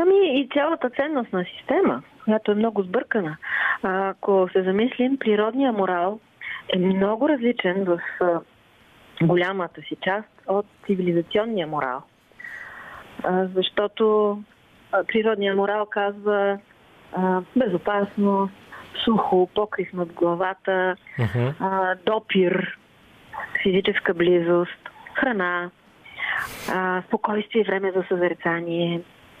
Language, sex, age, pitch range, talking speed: Bulgarian, female, 30-49, 175-215 Hz, 90 wpm